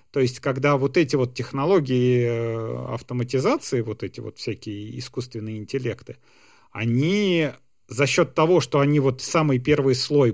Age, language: 40-59, Russian